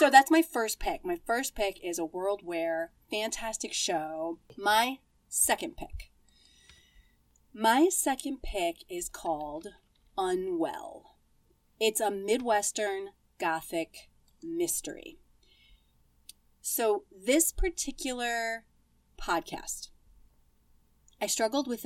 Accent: American